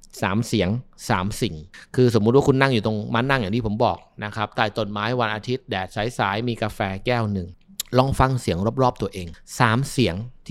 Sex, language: male, Thai